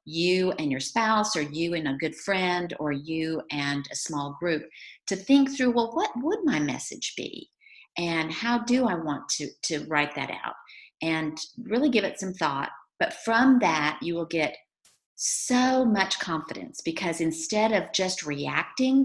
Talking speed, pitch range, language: 175 wpm, 155-205 Hz, English